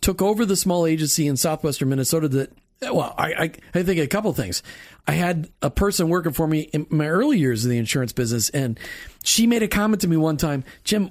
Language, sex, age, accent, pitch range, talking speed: English, male, 40-59, American, 140-190 Hz, 230 wpm